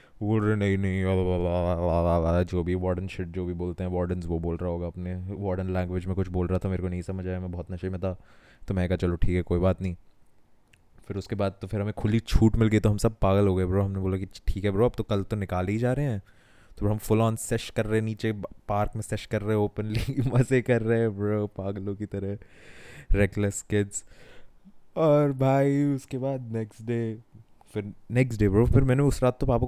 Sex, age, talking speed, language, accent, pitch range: male, 20-39, 235 wpm, Hindi, native, 95-115 Hz